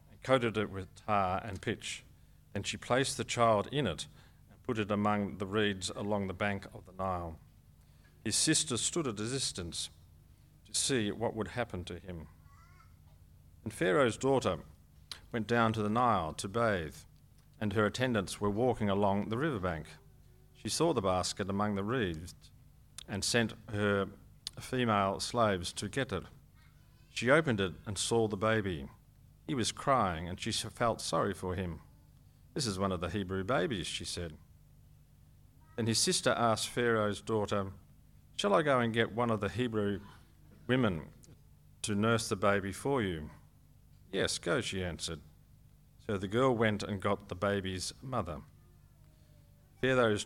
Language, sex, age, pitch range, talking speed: English, male, 40-59, 95-115 Hz, 160 wpm